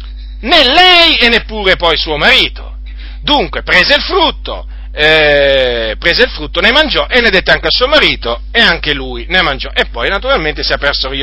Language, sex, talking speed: Italian, male, 185 wpm